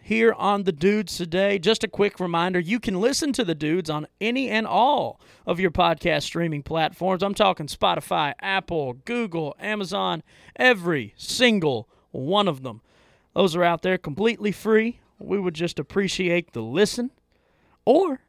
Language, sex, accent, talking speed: English, male, American, 160 wpm